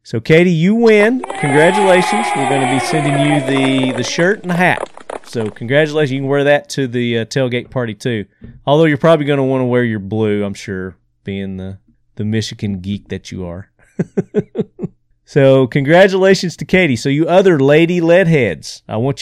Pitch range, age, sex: 110-150 Hz, 40-59, male